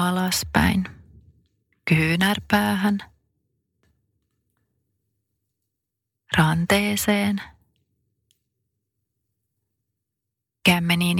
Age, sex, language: 30-49, female, Finnish